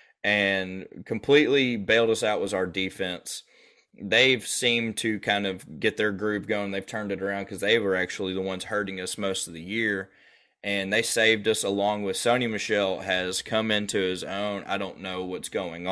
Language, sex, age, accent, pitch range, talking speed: English, male, 20-39, American, 95-115 Hz, 190 wpm